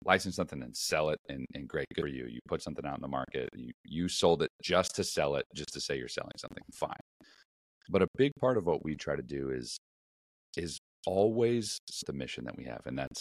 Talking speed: 240 wpm